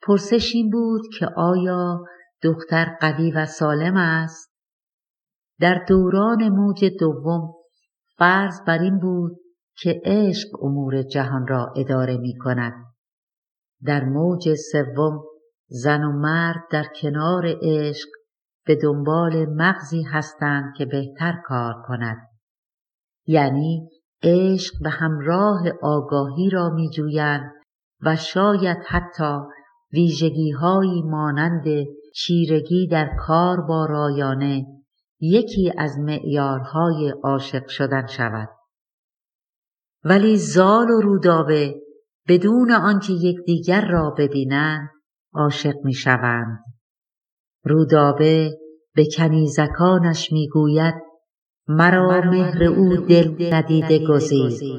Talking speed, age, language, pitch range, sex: 100 wpm, 50-69, Persian, 145-180 Hz, female